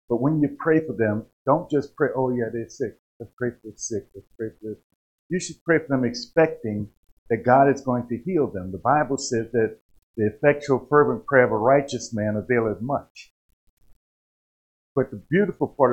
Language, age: English, 50-69